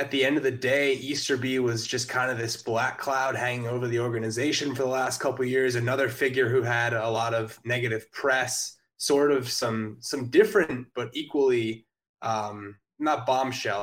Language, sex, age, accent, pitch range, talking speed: English, male, 20-39, American, 115-140 Hz, 185 wpm